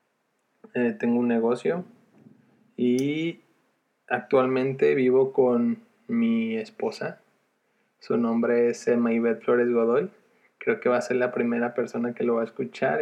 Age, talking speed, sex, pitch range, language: 20-39, 135 wpm, male, 120-180 Hz, Spanish